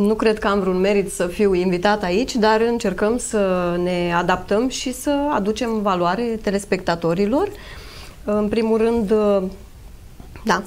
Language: Romanian